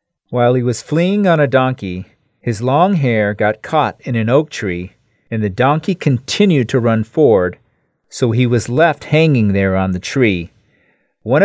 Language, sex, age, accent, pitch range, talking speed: English, male, 40-59, American, 105-140 Hz, 175 wpm